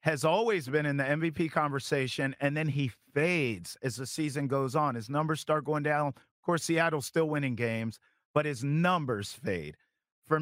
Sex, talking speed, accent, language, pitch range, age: male, 185 wpm, American, English, 150-205 Hz, 50-69